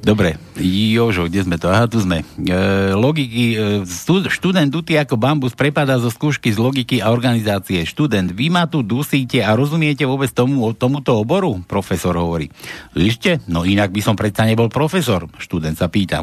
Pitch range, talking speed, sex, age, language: 100-145 Hz, 170 wpm, male, 60-79, Slovak